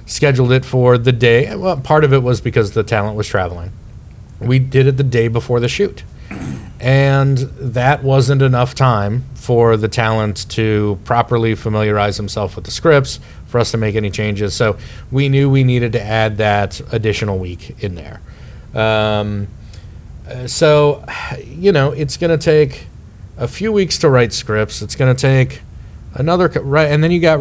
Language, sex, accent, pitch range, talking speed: English, male, American, 105-135 Hz, 175 wpm